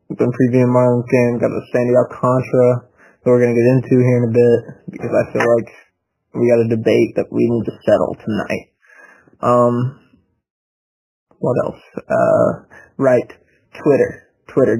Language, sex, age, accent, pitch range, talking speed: English, male, 20-39, American, 120-130 Hz, 160 wpm